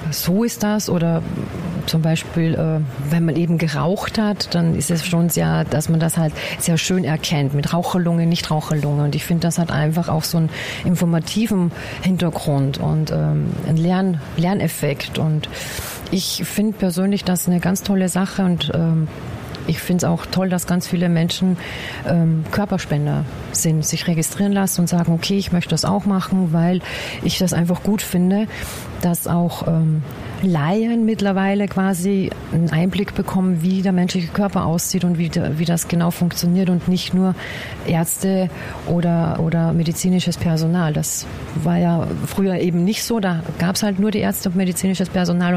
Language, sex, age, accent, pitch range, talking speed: German, female, 40-59, German, 160-185 Hz, 170 wpm